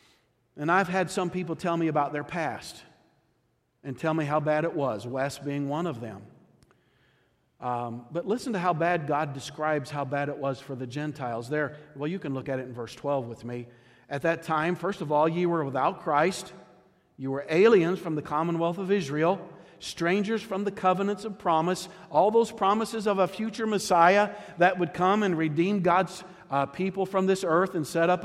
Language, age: English, 50-69